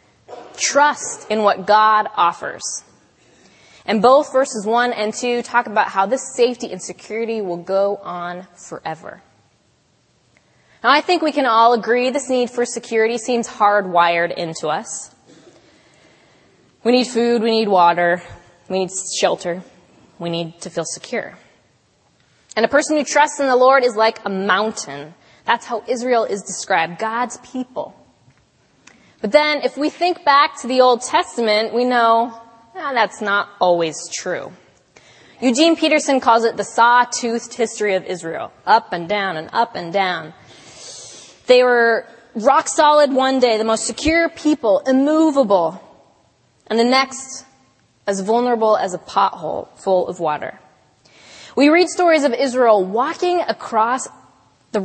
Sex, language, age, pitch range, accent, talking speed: female, English, 20-39, 195-260 Hz, American, 145 wpm